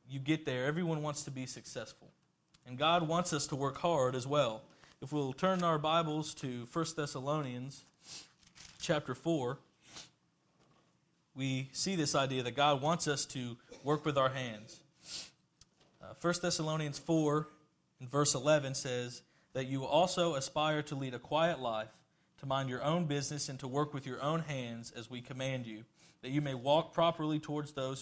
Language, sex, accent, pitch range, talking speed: English, male, American, 125-155 Hz, 170 wpm